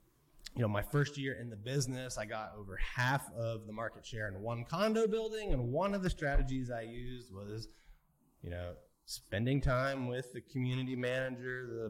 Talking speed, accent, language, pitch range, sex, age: 185 wpm, American, English, 115-150 Hz, male, 20-39